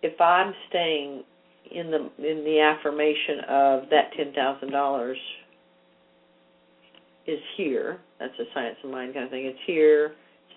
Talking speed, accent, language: 135 wpm, American, English